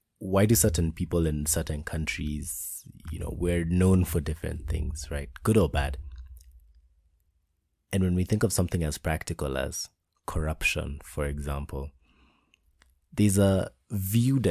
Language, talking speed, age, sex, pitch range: English, 135 wpm, 30-49, male, 75-90 Hz